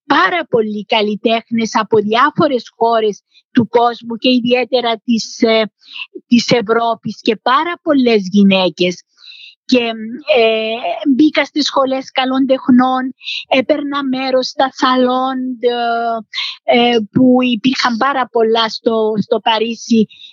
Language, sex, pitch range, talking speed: Greek, female, 230-285 Hz, 105 wpm